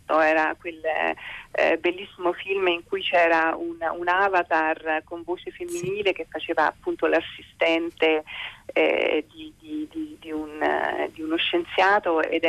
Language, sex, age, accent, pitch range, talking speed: Italian, female, 40-59, native, 165-255 Hz, 135 wpm